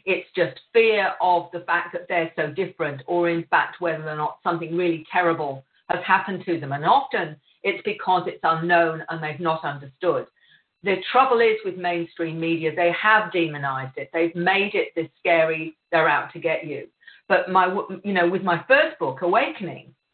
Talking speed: 185 wpm